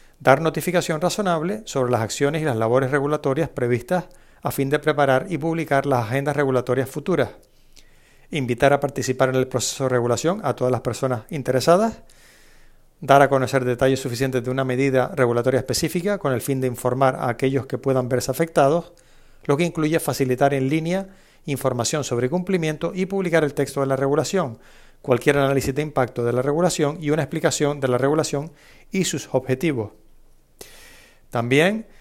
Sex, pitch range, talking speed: male, 130-165 Hz, 165 wpm